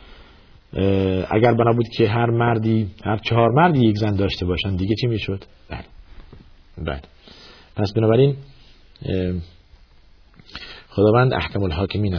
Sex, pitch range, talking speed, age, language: male, 75-110 Hz, 120 wpm, 50-69, Persian